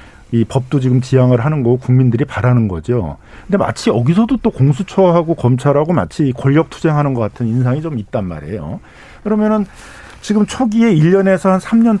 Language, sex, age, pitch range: Korean, male, 50-69, 120-165 Hz